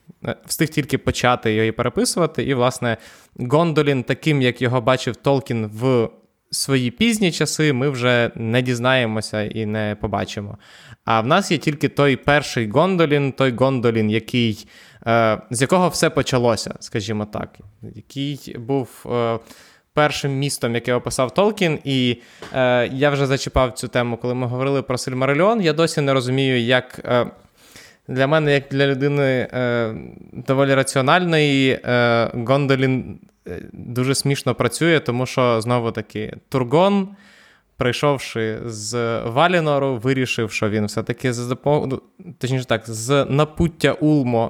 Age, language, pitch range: 20-39, Ukrainian, 120-150 Hz